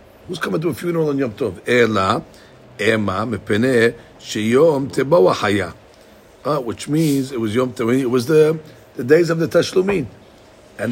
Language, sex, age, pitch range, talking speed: English, male, 50-69, 115-140 Hz, 160 wpm